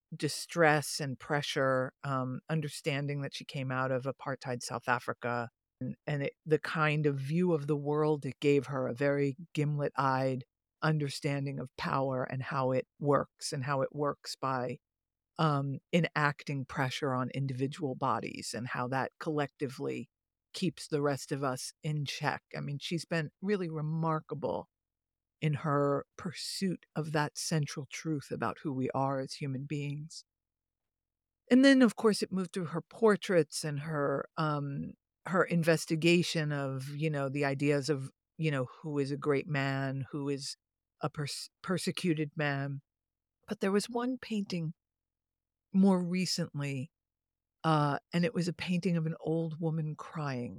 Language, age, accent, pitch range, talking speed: English, 50-69, American, 130-160 Hz, 155 wpm